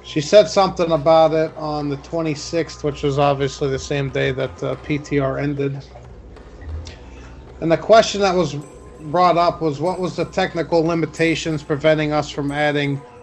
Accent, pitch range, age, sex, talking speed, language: American, 140-165 Hz, 30-49, male, 160 wpm, English